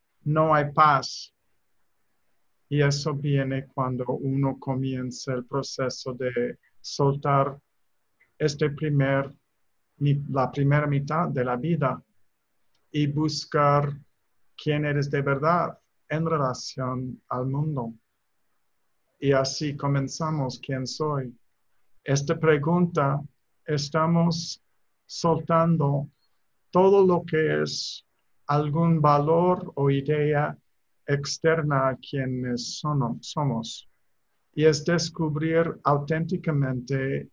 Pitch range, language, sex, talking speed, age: 130-155 Hz, Spanish, male, 90 wpm, 50-69